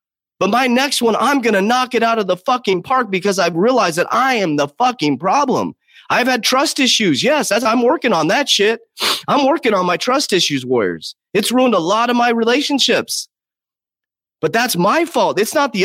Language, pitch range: English, 180-255 Hz